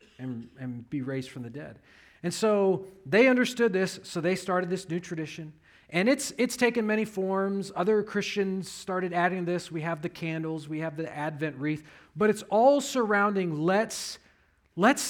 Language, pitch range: English, 145-225 Hz